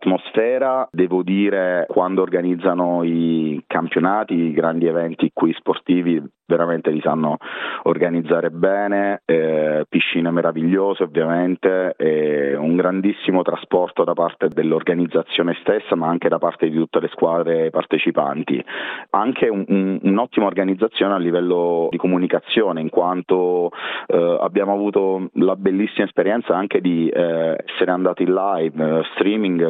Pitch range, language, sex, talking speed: 85-95 Hz, Italian, male, 125 wpm